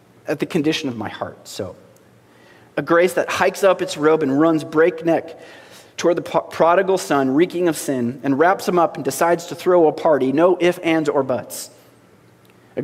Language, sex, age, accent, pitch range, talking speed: English, male, 30-49, American, 140-190 Hz, 185 wpm